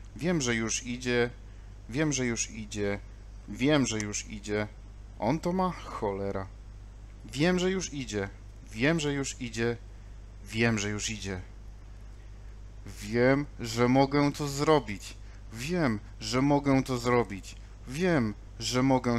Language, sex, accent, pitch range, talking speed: Polish, male, native, 100-125 Hz, 130 wpm